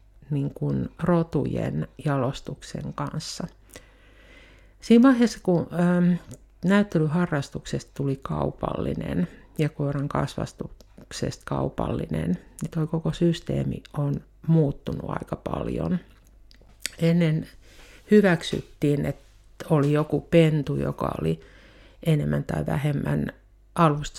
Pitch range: 100-165 Hz